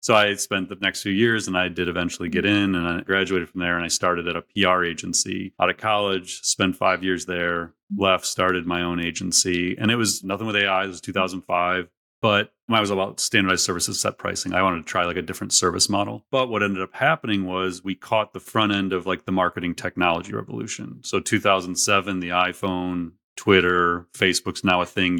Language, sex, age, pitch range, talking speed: English, male, 30-49, 90-100 Hz, 210 wpm